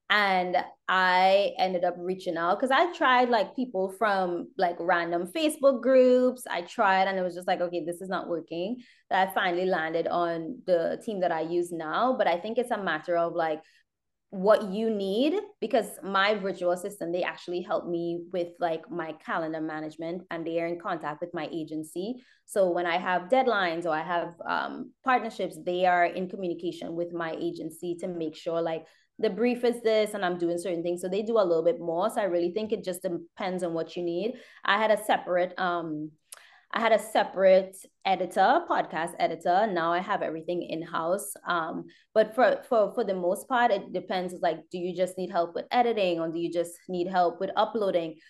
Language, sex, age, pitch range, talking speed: English, female, 20-39, 170-220 Hz, 205 wpm